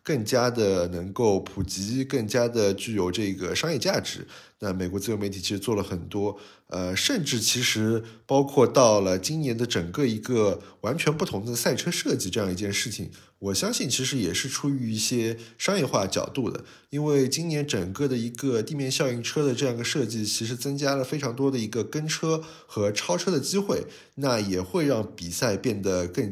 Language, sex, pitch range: Chinese, male, 105-140 Hz